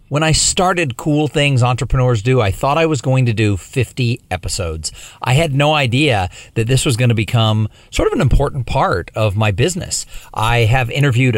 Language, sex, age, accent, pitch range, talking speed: English, male, 50-69, American, 115-155 Hz, 190 wpm